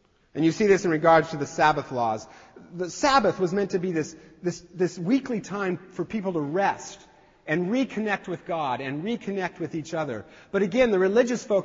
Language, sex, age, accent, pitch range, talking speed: English, male, 40-59, American, 160-235 Hz, 200 wpm